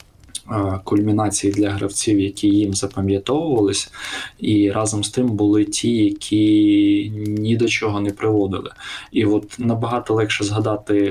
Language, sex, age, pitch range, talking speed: Ukrainian, male, 20-39, 100-110 Hz, 125 wpm